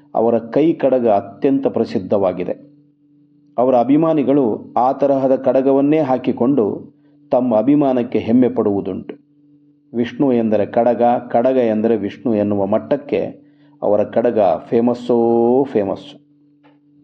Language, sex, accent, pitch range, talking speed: Kannada, male, native, 120-145 Hz, 85 wpm